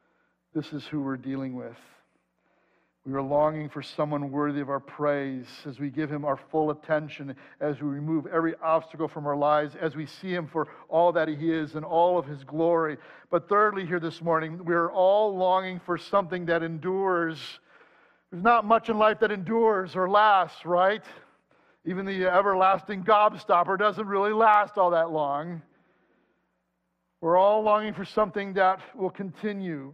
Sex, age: male, 50-69